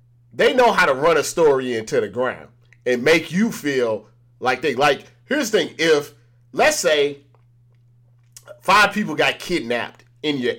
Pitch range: 120-170 Hz